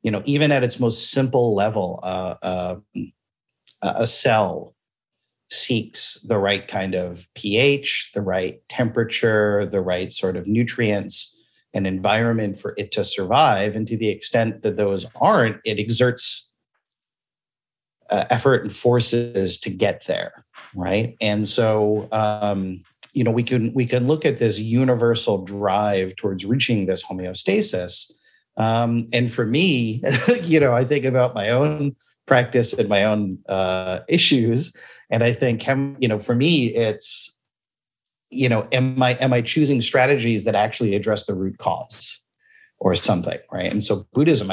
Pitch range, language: 100-125 Hz, English